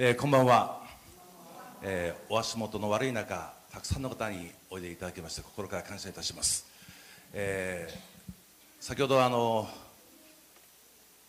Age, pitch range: 50-69, 95-130 Hz